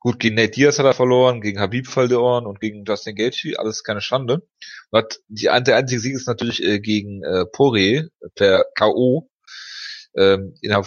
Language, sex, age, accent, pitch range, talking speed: German, male, 30-49, German, 110-130 Hz, 150 wpm